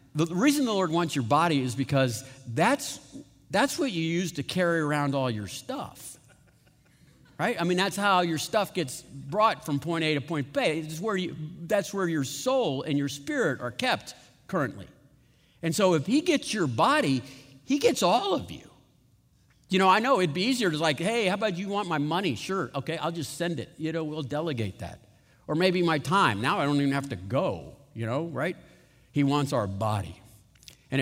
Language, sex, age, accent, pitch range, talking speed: English, male, 50-69, American, 140-180 Hz, 205 wpm